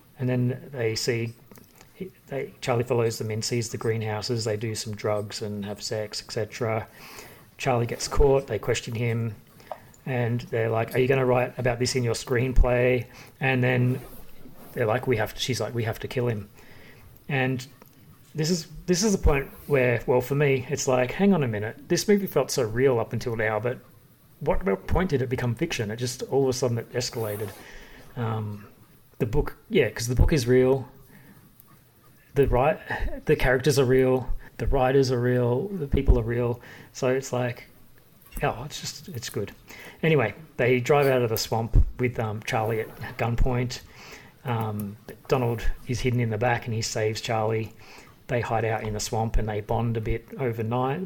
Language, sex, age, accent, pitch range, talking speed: English, male, 30-49, Australian, 115-130 Hz, 190 wpm